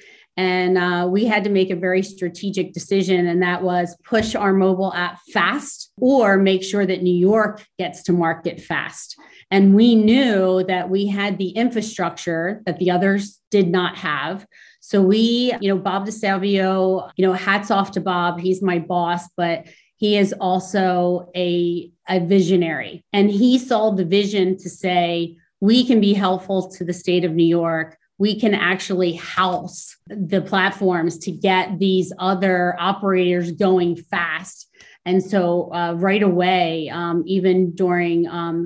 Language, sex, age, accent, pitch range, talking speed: English, female, 30-49, American, 175-195 Hz, 160 wpm